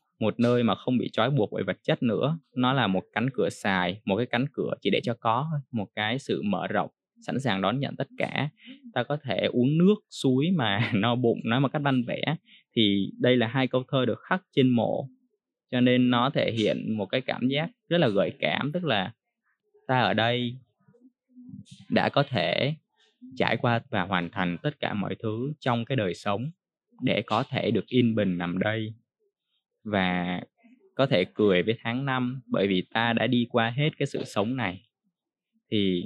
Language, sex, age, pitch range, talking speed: Vietnamese, male, 20-39, 110-155 Hz, 200 wpm